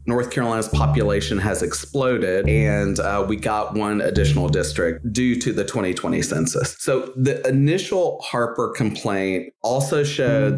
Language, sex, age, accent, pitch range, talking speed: English, male, 30-49, American, 100-130 Hz, 135 wpm